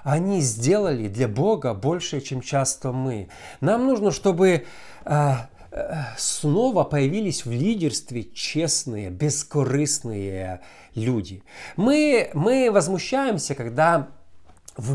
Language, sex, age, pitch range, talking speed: Russian, male, 50-69, 135-190 Hz, 90 wpm